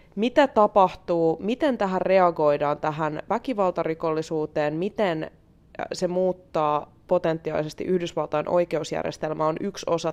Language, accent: Finnish, native